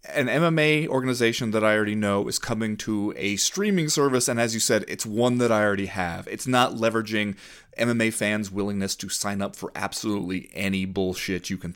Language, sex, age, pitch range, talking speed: English, male, 30-49, 95-135 Hz, 195 wpm